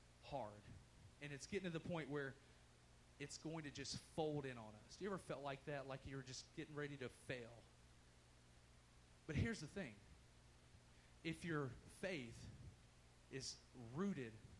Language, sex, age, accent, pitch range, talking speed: English, male, 30-49, American, 135-190 Hz, 155 wpm